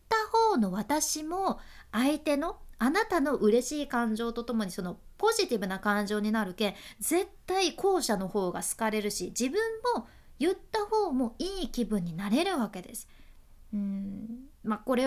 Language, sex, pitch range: Japanese, female, 210-320 Hz